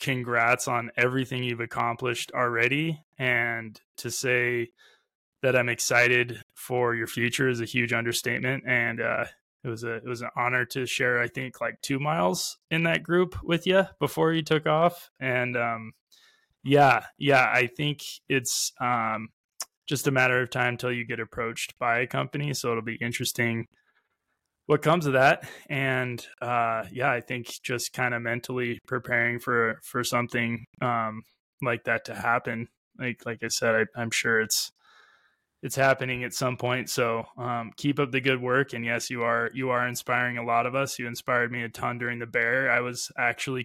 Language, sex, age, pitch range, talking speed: English, male, 20-39, 120-130 Hz, 180 wpm